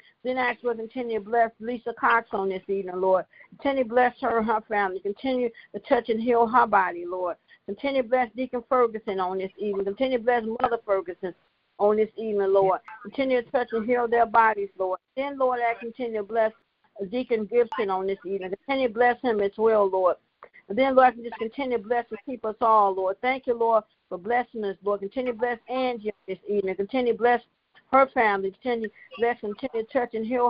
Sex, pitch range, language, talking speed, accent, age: female, 200-245 Hz, English, 215 wpm, American, 50-69